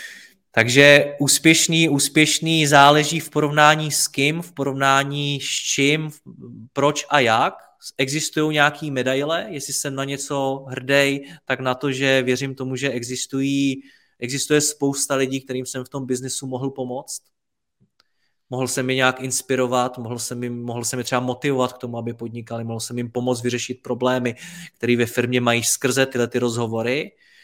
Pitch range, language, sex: 125-145 Hz, Czech, male